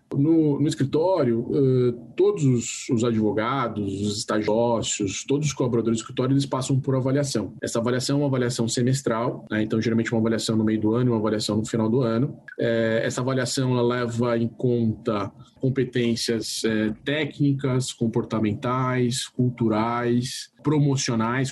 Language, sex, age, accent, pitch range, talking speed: Portuguese, male, 20-39, Brazilian, 115-135 Hz, 150 wpm